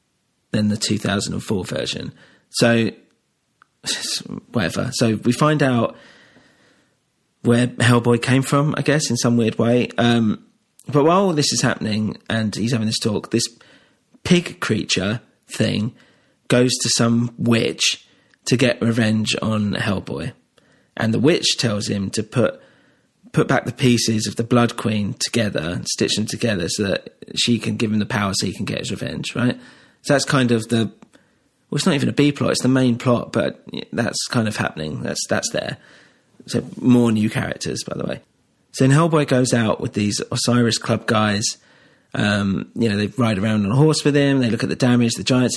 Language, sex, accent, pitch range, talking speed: English, male, British, 110-130 Hz, 185 wpm